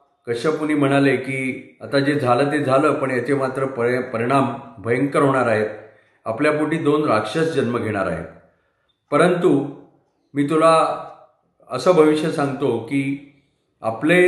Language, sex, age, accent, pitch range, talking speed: Marathi, male, 40-59, native, 130-155 Hz, 125 wpm